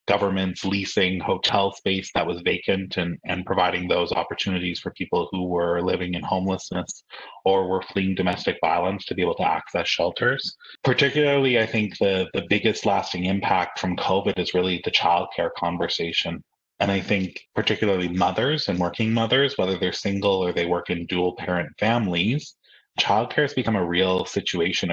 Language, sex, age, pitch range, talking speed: English, male, 20-39, 90-110 Hz, 165 wpm